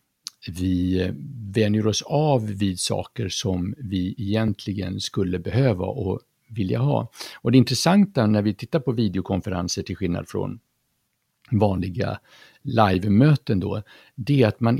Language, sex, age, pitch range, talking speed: Swedish, male, 60-79, 95-125 Hz, 130 wpm